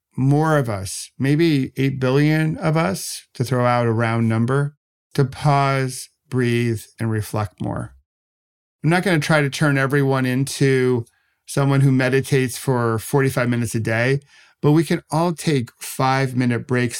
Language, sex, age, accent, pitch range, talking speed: English, male, 50-69, American, 115-145 Hz, 155 wpm